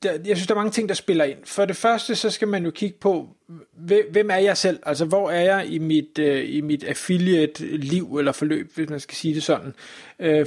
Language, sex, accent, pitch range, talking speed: Danish, male, native, 150-185 Hz, 235 wpm